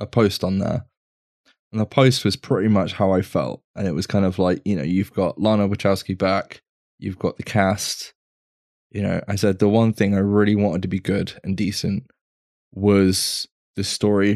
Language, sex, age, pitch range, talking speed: English, male, 10-29, 95-110 Hz, 200 wpm